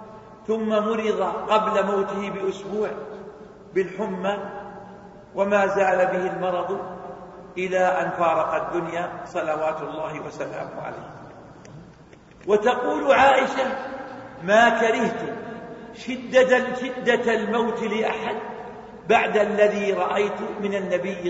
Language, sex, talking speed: Arabic, male, 85 wpm